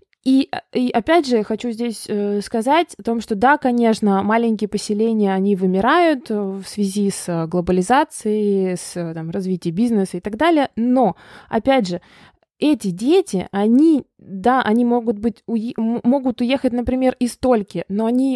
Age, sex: 20-39, female